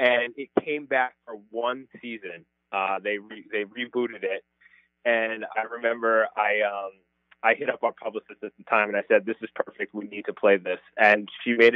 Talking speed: 205 wpm